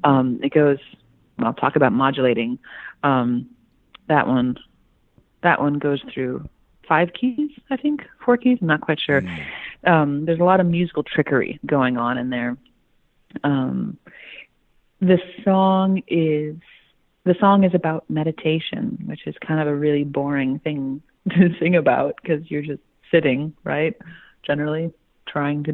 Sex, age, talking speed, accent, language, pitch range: female, 30-49, 145 wpm, American, English, 140-180 Hz